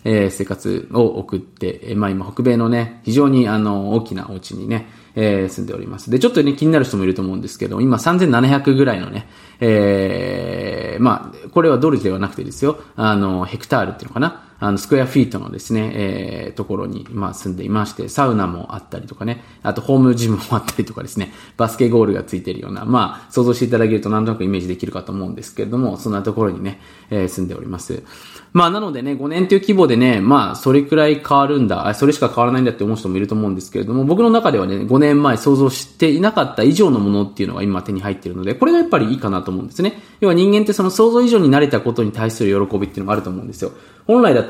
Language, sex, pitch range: Japanese, male, 100-140 Hz